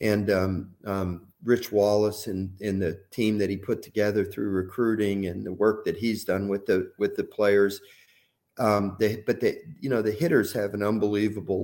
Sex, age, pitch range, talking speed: male, 40-59, 95-105 Hz, 190 wpm